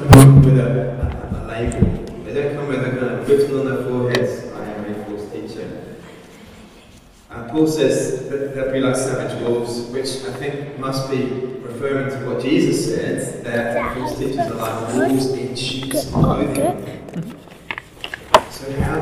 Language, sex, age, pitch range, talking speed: English, male, 30-49, 115-135 Hz, 160 wpm